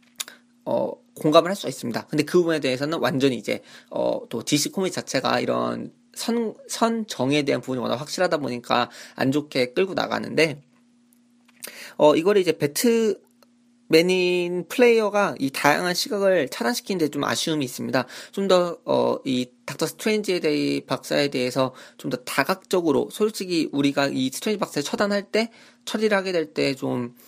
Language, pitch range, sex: Korean, 135-200 Hz, male